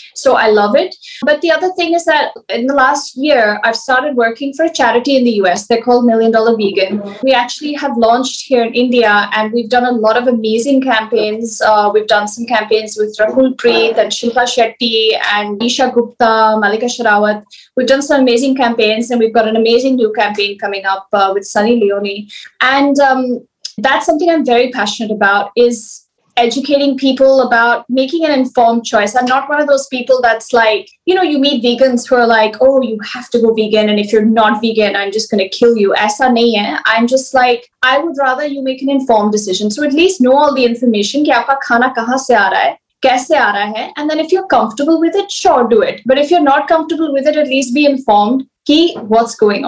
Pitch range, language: 220-275 Hz, Hindi